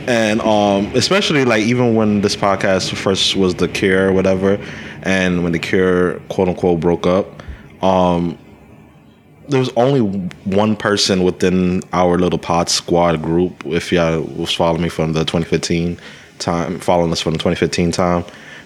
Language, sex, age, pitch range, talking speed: English, male, 20-39, 85-100 Hz, 150 wpm